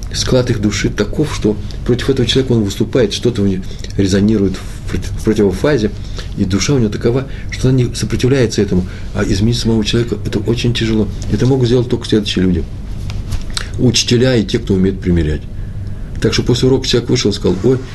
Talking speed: 185 wpm